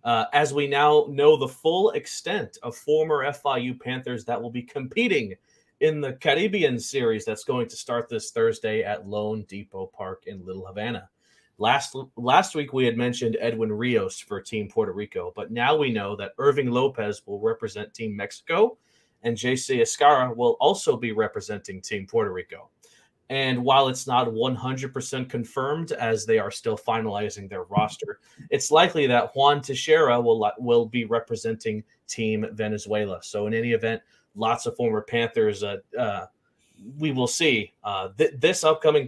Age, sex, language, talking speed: 30-49, male, English, 165 wpm